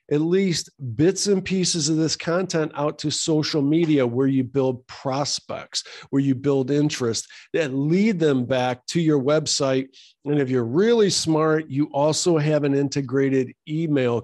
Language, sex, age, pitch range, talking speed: English, male, 50-69, 125-155 Hz, 160 wpm